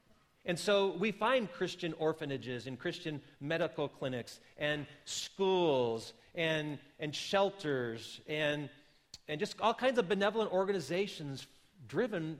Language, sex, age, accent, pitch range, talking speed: English, male, 40-59, American, 145-200 Hz, 115 wpm